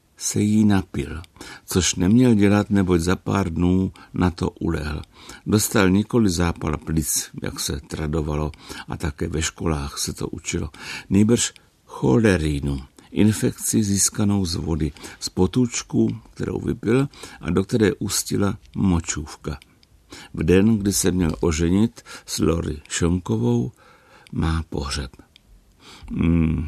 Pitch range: 75-95 Hz